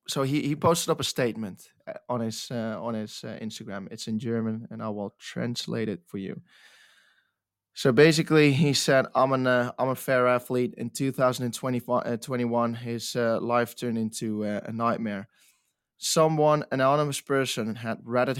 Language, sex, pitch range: English, male, 115-130 Hz